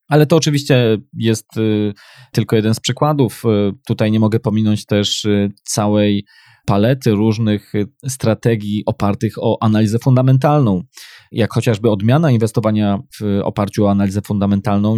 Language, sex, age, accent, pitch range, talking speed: Polish, male, 20-39, native, 105-120 Hz, 120 wpm